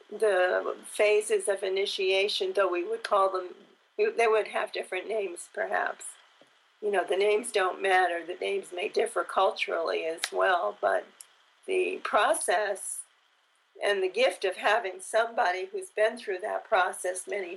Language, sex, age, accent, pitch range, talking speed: English, female, 50-69, American, 195-235 Hz, 145 wpm